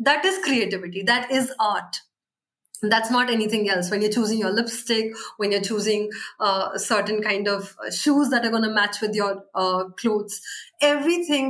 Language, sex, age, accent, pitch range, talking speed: English, female, 20-39, Indian, 215-265 Hz, 165 wpm